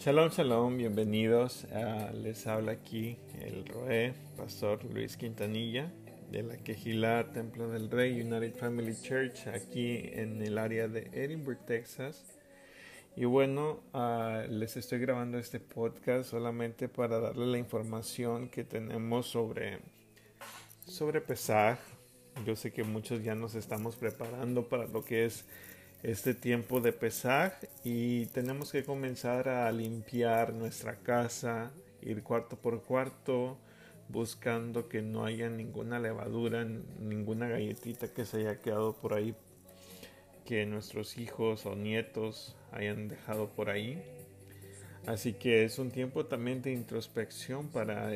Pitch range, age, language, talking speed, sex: 110-125 Hz, 50-69, Spanish, 130 wpm, male